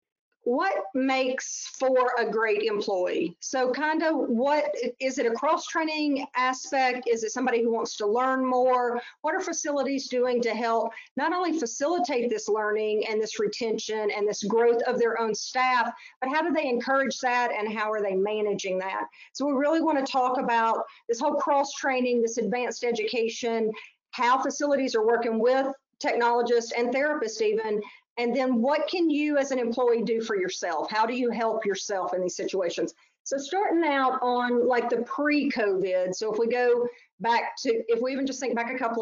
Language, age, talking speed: English, 40-59, 180 wpm